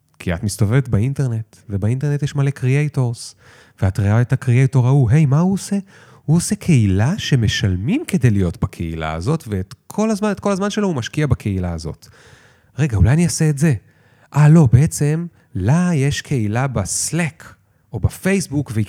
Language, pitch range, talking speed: Hebrew, 105-155 Hz, 170 wpm